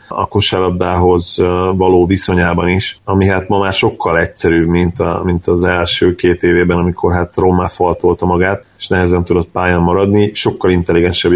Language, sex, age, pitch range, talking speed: Hungarian, male, 30-49, 90-105 Hz, 155 wpm